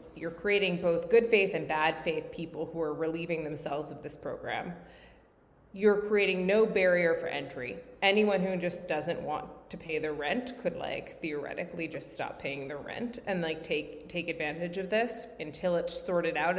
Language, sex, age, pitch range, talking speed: English, female, 20-39, 165-210 Hz, 180 wpm